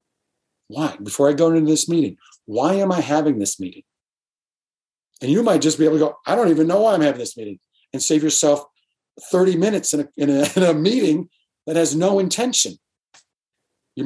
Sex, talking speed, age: male, 190 wpm, 50-69